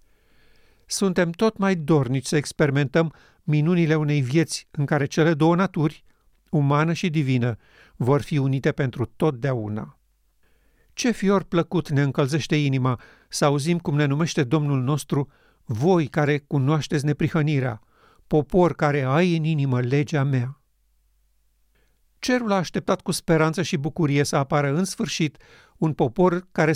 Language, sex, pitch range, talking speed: Romanian, male, 135-175 Hz, 135 wpm